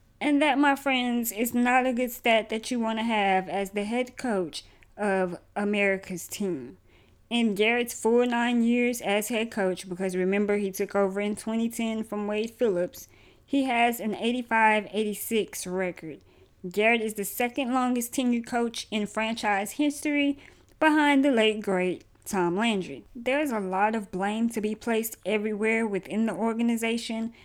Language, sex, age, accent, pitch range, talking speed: English, female, 20-39, American, 195-240 Hz, 155 wpm